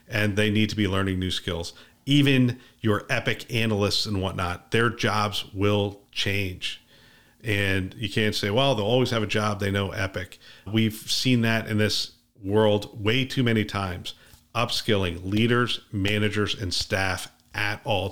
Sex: male